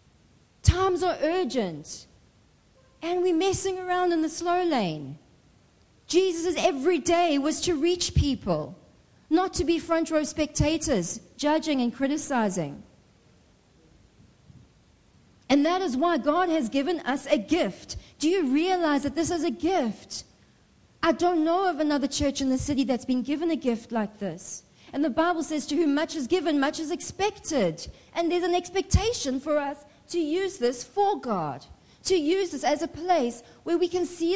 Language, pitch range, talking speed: English, 275-350 Hz, 165 wpm